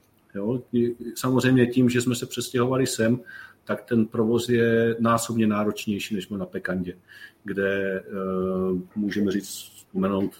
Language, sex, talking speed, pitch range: Czech, male, 120 wpm, 100-115 Hz